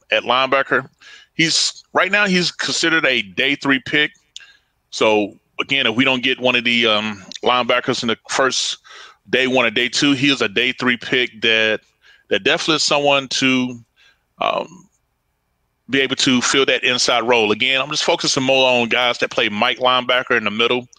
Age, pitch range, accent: 30-49, 115-135 Hz, American